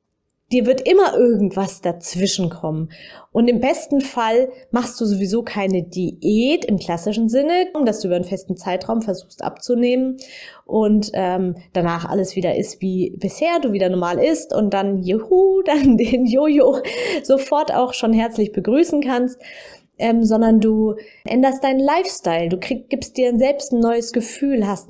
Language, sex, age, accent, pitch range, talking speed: German, female, 20-39, German, 195-270 Hz, 155 wpm